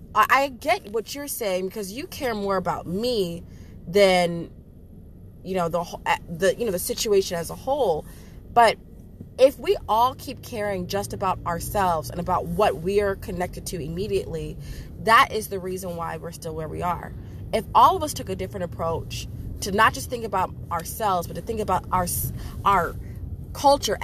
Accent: American